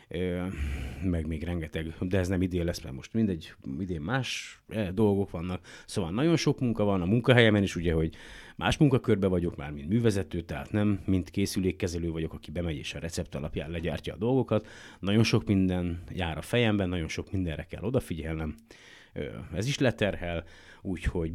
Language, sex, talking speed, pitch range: Hungarian, male, 170 wpm, 80-110 Hz